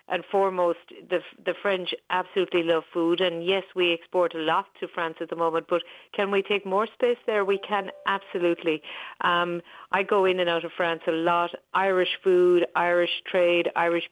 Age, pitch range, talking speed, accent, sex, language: 50-69, 175-200 Hz, 185 wpm, Irish, female, English